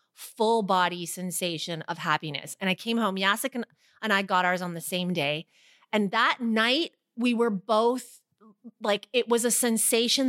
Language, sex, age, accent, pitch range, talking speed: English, female, 30-49, American, 205-260 Hz, 175 wpm